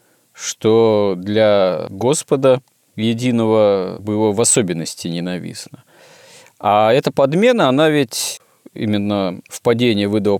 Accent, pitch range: native, 95-125 Hz